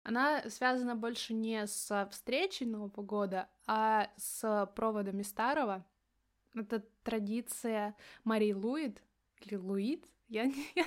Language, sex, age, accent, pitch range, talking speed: Russian, female, 20-39, native, 210-245 Hz, 105 wpm